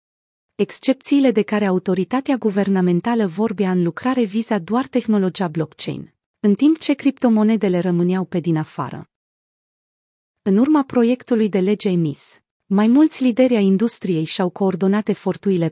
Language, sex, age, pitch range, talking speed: Romanian, female, 30-49, 180-225 Hz, 130 wpm